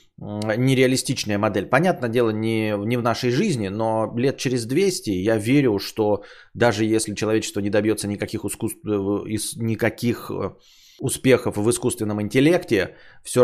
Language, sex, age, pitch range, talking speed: Bulgarian, male, 20-39, 105-130 Hz, 125 wpm